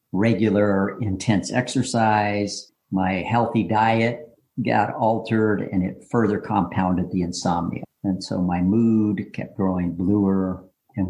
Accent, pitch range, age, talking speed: American, 95-115 Hz, 50-69, 120 wpm